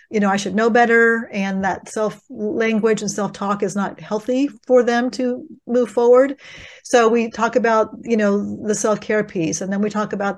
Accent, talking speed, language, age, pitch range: American, 190 wpm, English, 40-59, 195-230 Hz